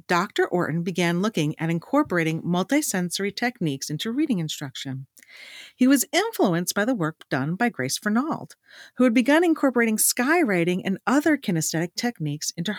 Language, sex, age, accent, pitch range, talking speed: English, female, 40-59, American, 170-260 Hz, 145 wpm